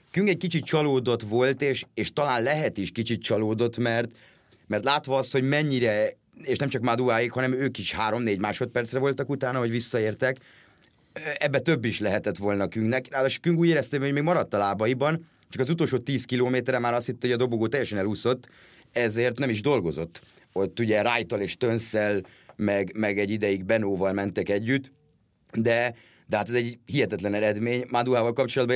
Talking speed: 175 wpm